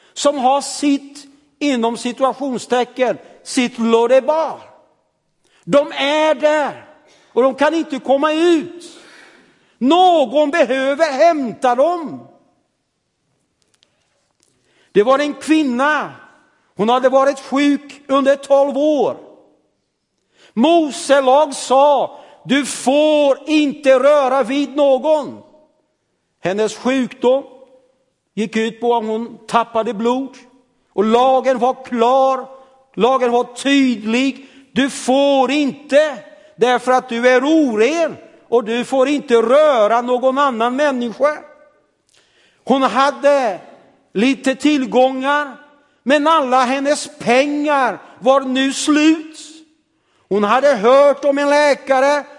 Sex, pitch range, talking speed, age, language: male, 245-290 Hz, 100 wpm, 60-79, Swedish